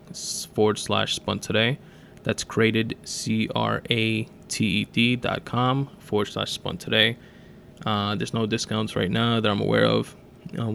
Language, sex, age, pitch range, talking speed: English, male, 20-39, 110-130 Hz, 160 wpm